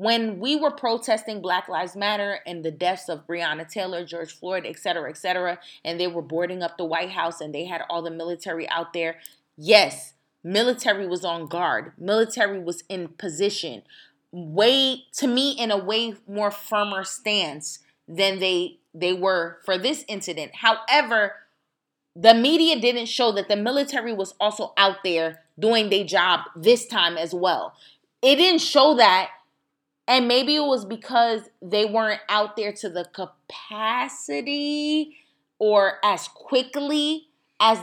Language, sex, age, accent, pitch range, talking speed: English, female, 20-39, American, 180-240 Hz, 155 wpm